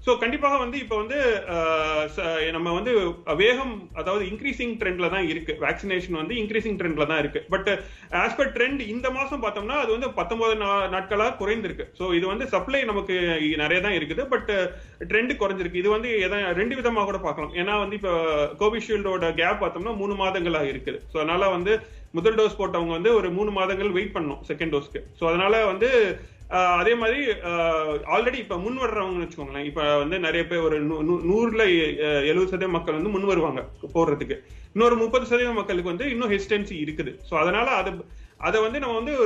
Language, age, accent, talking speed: Tamil, 30-49, native, 105 wpm